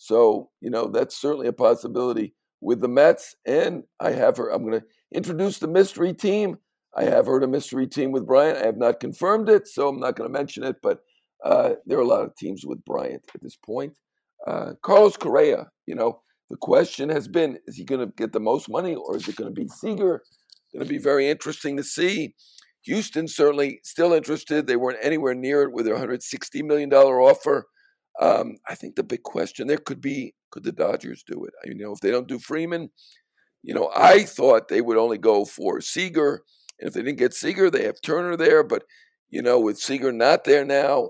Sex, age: male, 60-79